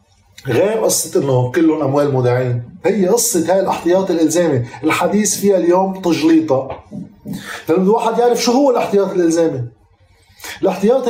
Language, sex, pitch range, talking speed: Arabic, male, 145-210 Hz, 125 wpm